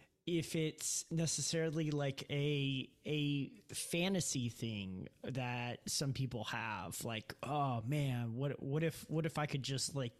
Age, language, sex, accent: 30-49, English, male, American